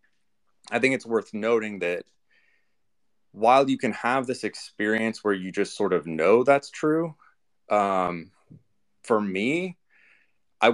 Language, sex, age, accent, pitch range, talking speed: English, male, 30-49, American, 90-115 Hz, 135 wpm